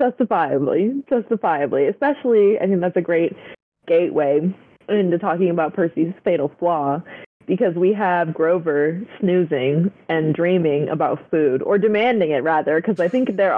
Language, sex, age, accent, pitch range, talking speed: English, female, 20-39, American, 160-210 Hz, 140 wpm